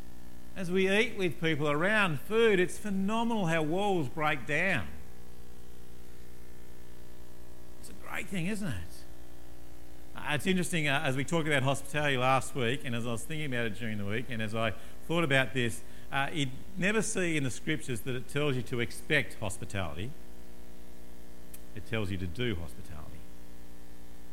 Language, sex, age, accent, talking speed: English, male, 50-69, Australian, 165 wpm